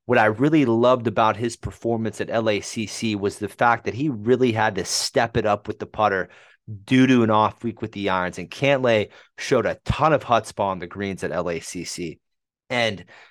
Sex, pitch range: male, 105-120 Hz